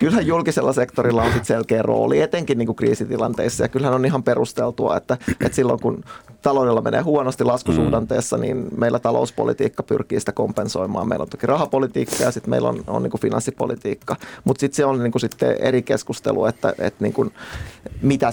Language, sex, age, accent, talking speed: Finnish, male, 30-49, native, 170 wpm